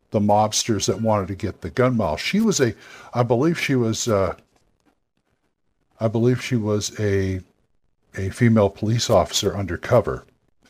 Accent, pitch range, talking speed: American, 110-130 Hz, 150 wpm